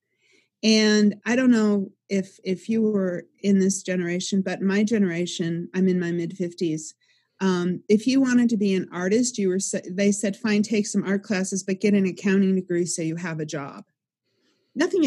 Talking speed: 185 wpm